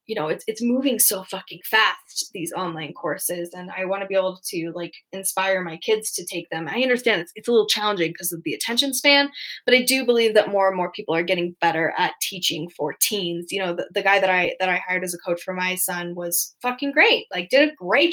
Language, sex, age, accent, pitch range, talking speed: English, female, 10-29, American, 175-280 Hz, 250 wpm